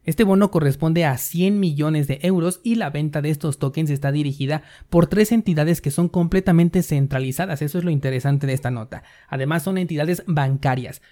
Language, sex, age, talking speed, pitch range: Spanish, male, 30-49, 185 wpm, 140-175 Hz